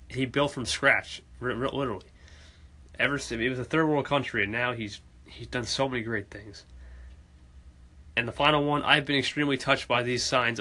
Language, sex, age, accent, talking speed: English, male, 20-39, American, 185 wpm